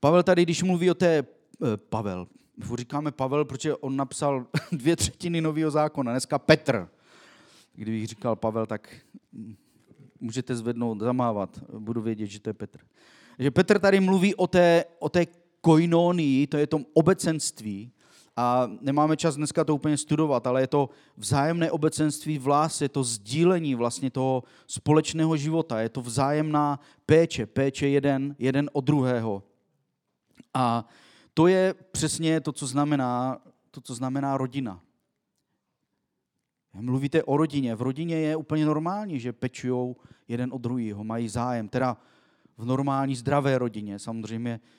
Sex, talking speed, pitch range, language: male, 145 wpm, 120-150 Hz, Czech